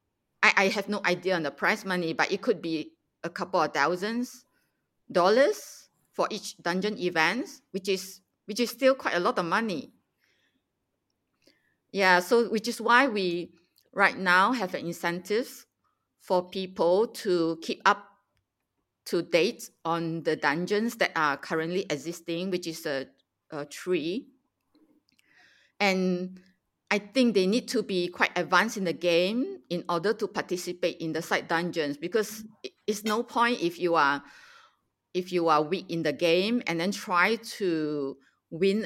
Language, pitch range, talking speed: English, 165-210 Hz, 155 wpm